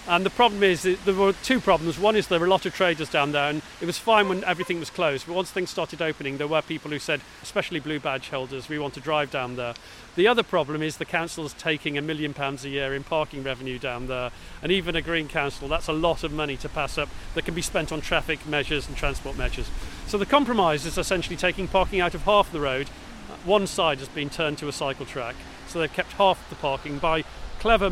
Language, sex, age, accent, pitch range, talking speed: English, male, 40-59, British, 145-185 Hz, 250 wpm